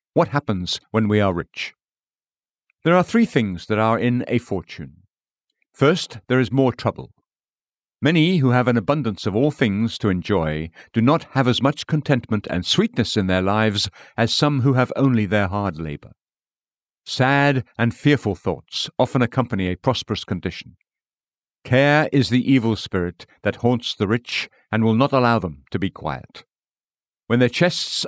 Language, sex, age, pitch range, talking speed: English, male, 50-69, 110-140 Hz, 165 wpm